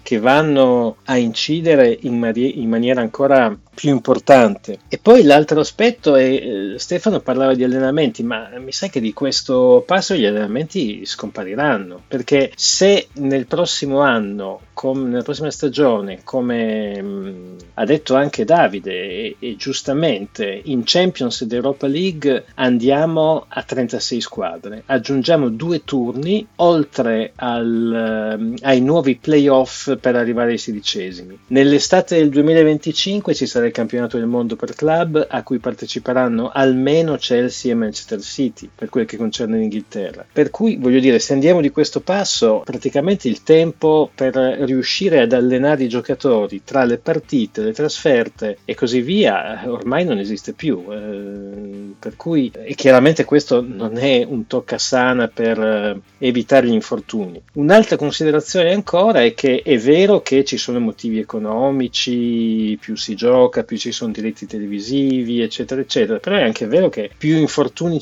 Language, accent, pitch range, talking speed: Italian, native, 115-155 Hz, 145 wpm